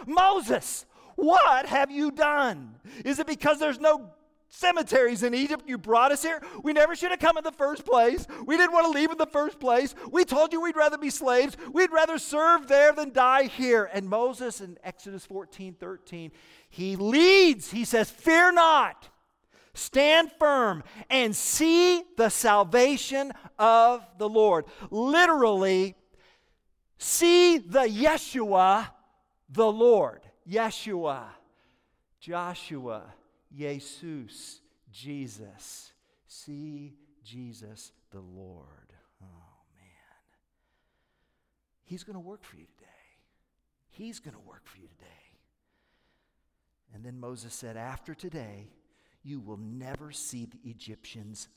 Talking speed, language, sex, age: 130 wpm, English, male, 50-69